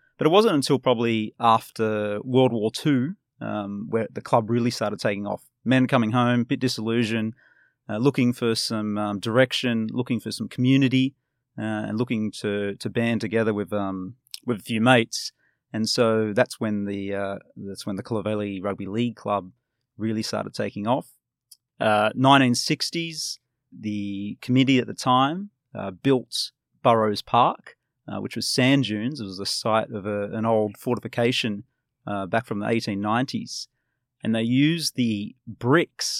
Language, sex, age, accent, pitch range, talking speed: English, male, 30-49, Australian, 105-130 Hz, 155 wpm